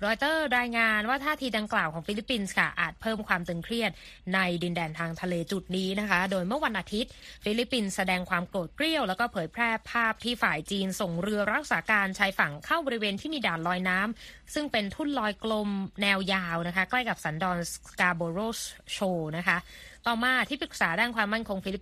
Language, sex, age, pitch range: Thai, female, 20-39, 185-230 Hz